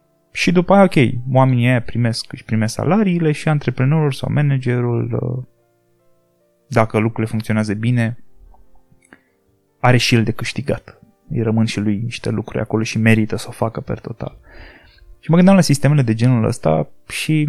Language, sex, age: Romanian, male, 20-39